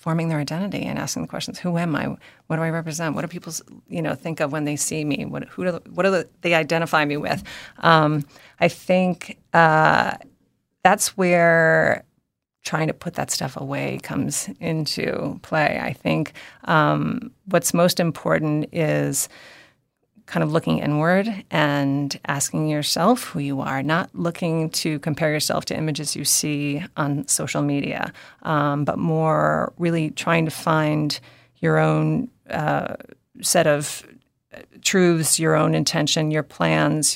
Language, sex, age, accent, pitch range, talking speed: English, female, 30-49, American, 150-180 Hz, 145 wpm